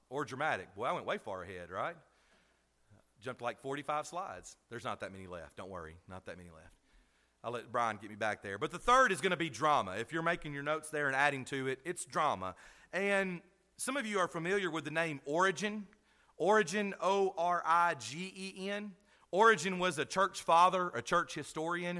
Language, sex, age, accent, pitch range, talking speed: English, male, 40-59, American, 150-195 Hz, 195 wpm